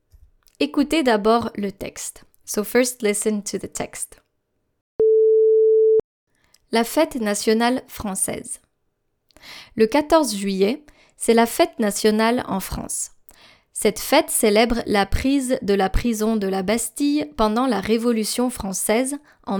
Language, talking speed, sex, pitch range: English, 120 wpm, female, 210-275 Hz